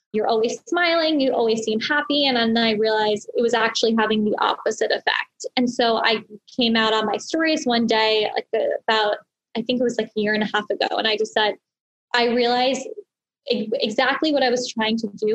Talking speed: 210 wpm